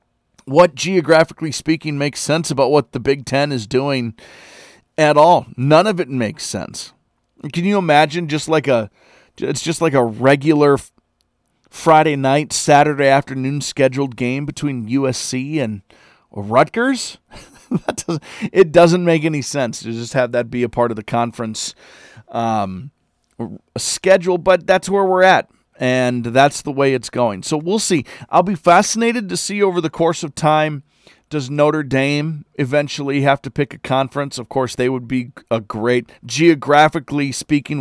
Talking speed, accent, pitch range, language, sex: 160 wpm, American, 125-160 Hz, English, male